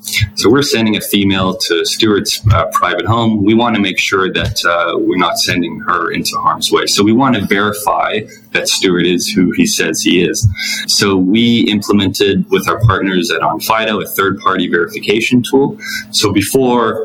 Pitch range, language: 90-110 Hz, English